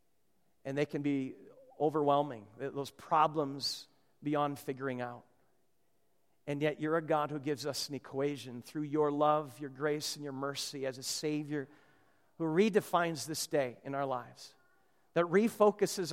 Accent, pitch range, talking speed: American, 140-175 Hz, 150 wpm